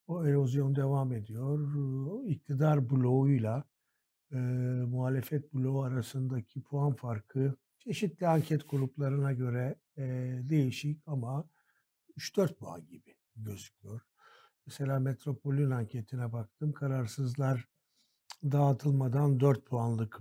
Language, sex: Turkish, male